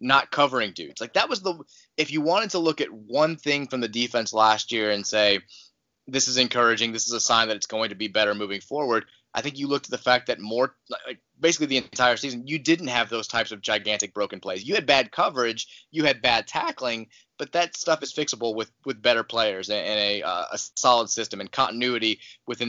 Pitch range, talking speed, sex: 105-140 Hz, 230 wpm, male